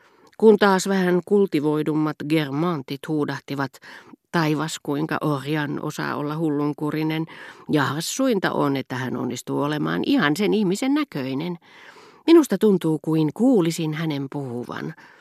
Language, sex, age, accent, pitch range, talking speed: Finnish, female, 40-59, native, 135-185 Hz, 115 wpm